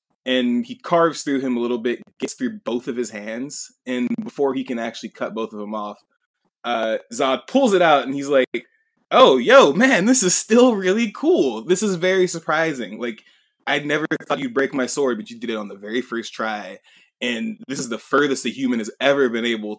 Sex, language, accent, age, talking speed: male, English, American, 20-39, 220 wpm